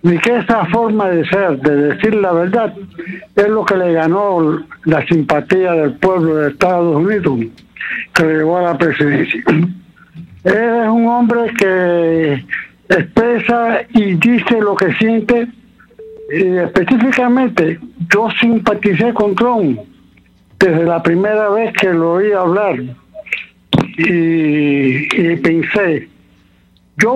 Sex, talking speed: male, 125 wpm